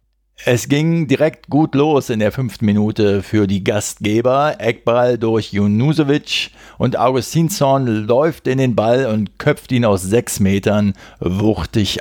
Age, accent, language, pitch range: 50-69, German, German, 100-130 Hz